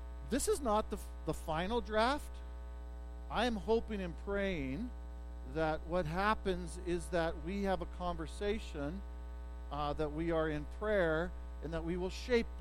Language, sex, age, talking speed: English, male, 50-69, 150 wpm